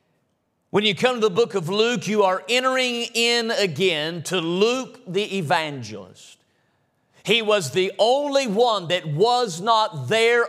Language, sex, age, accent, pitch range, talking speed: English, male, 40-59, American, 180-235 Hz, 150 wpm